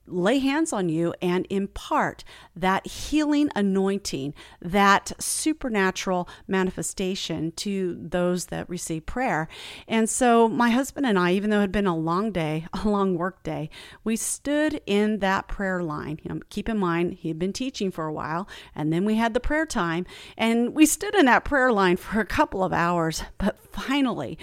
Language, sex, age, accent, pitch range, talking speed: English, female, 40-59, American, 175-235 Hz, 175 wpm